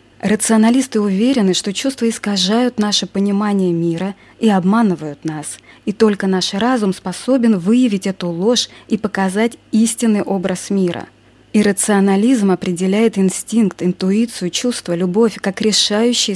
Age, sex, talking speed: 20-39, female, 115 wpm